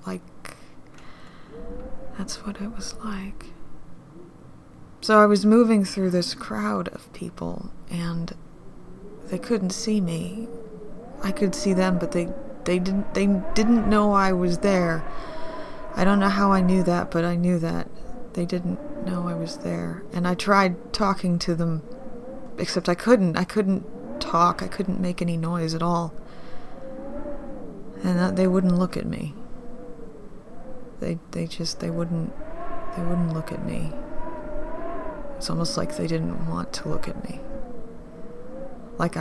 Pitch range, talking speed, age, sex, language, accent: 170-240 Hz, 145 wpm, 20-39, female, English, American